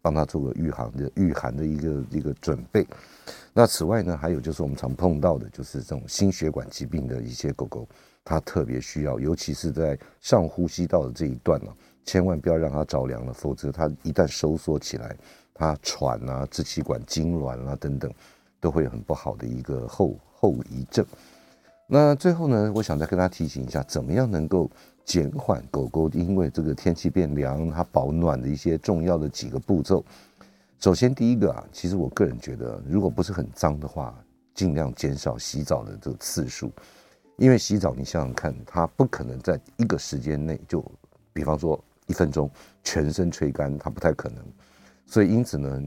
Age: 50-69